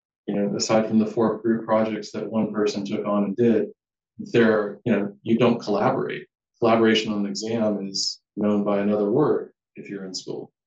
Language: English